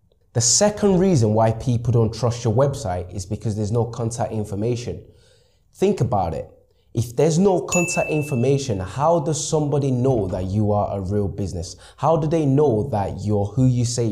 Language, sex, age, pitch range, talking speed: English, male, 20-39, 100-135 Hz, 180 wpm